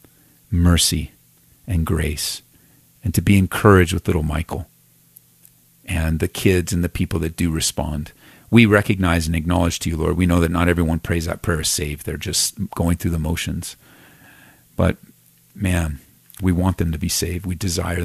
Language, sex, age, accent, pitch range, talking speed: English, male, 40-59, American, 85-105 Hz, 175 wpm